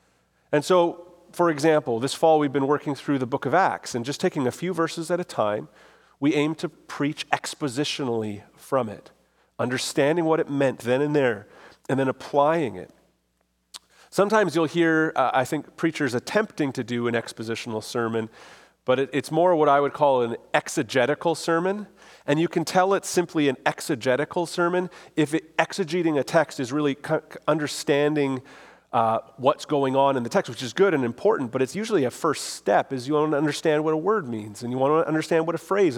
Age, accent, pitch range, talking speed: 40-59, American, 135-170 Hz, 190 wpm